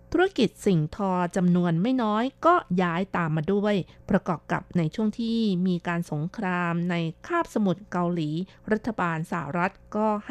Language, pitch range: Thai, 170-210 Hz